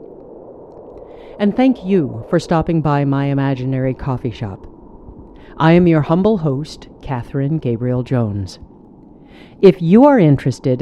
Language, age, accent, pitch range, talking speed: English, 50-69, American, 130-185 Hz, 115 wpm